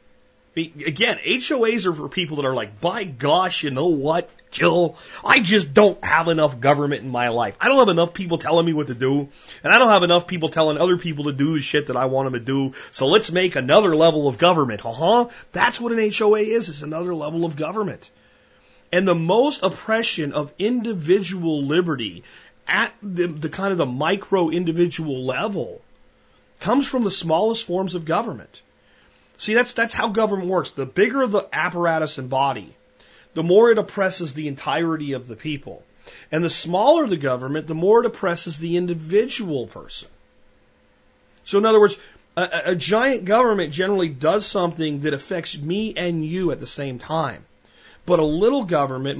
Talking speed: 185 wpm